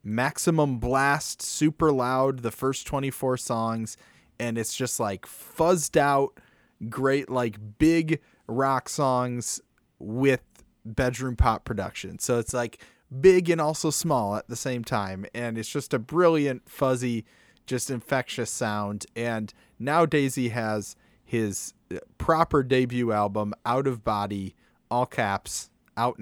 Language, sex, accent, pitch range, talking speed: English, male, American, 110-135 Hz, 130 wpm